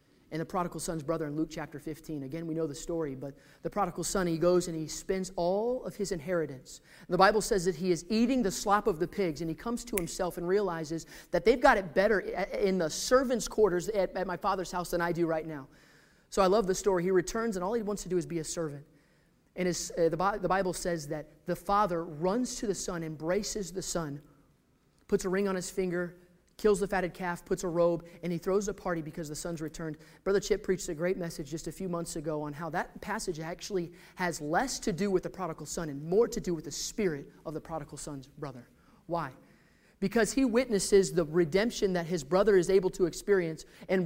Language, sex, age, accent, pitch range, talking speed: English, male, 30-49, American, 160-195 Hz, 225 wpm